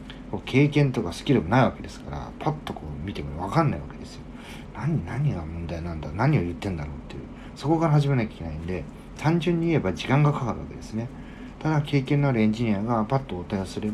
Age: 40-59